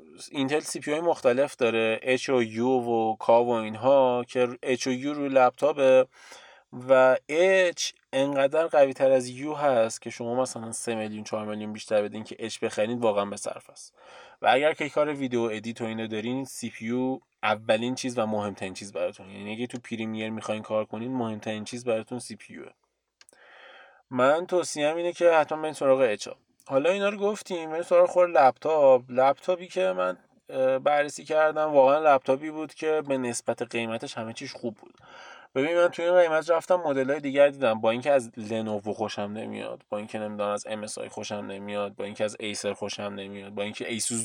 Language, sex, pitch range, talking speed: Persian, male, 110-150 Hz, 180 wpm